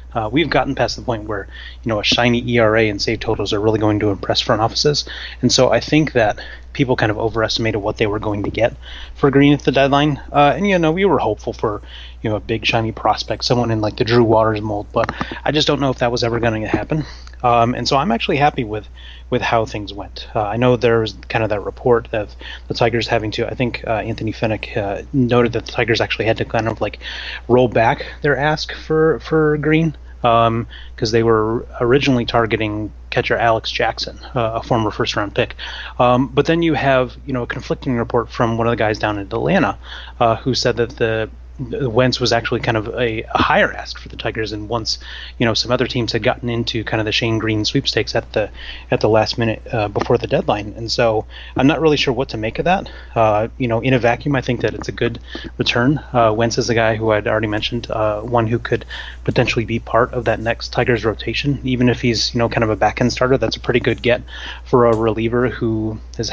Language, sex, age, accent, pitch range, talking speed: English, male, 30-49, American, 110-125 Hz, 240 wpm